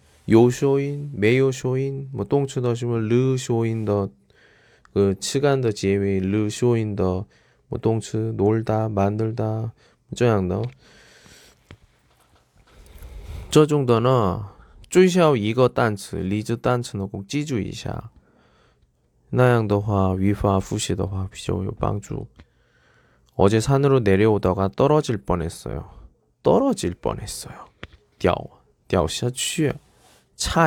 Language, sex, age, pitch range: Chinese, male, 20-39, 95-130 Hz